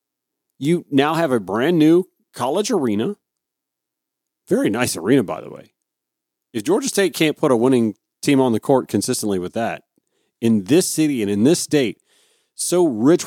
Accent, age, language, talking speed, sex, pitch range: American, 40-59, English, 165 wpm, male, 105-150 Hz